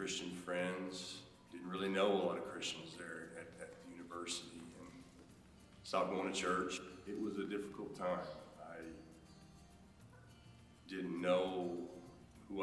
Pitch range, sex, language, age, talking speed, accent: 85-90 Hz, male, English, 40-59, 135 wpm, American